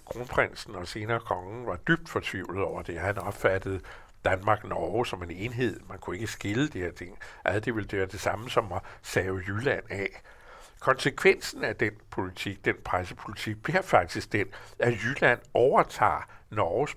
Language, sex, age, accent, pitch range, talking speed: Danish, male, 60-79, American, 100-120 Hz, 160 wpm